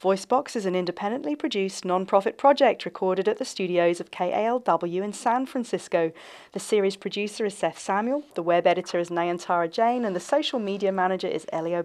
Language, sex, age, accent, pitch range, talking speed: English, female, 40-59, British, 175-245 Hz, 175 wpm